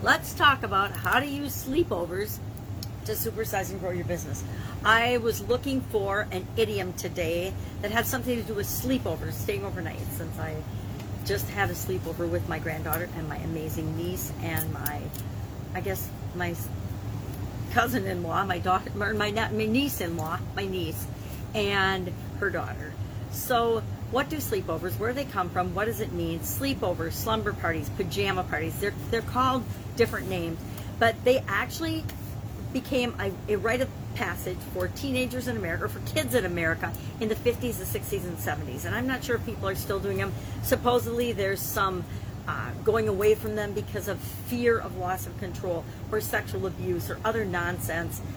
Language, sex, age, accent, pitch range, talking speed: English, female, 40-59, American, 100-120 Hz, 170 wpm